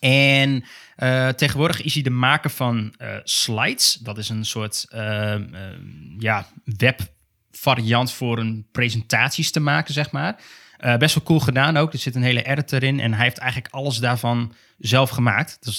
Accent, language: Dutch, Dutch